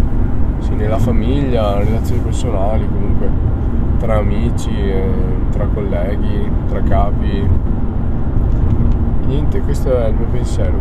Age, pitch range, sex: 20-39, 85-110 Hz, male